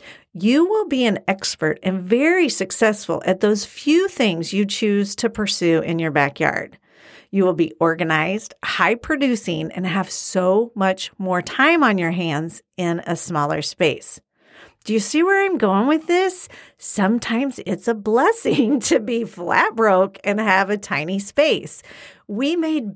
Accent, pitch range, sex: American, 185-260 Hz, female